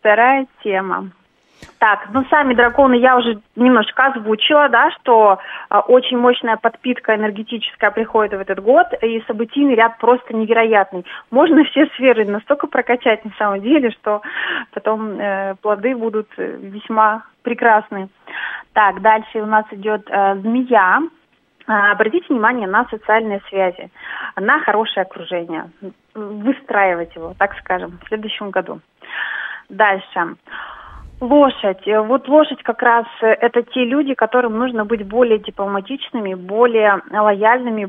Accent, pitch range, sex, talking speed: native, 205-250 Hz, female, 125 wpm